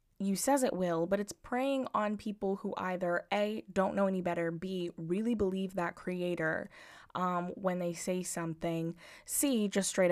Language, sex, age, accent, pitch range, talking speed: English, female, 10-29, American, 175-215 Hz, 170 wpm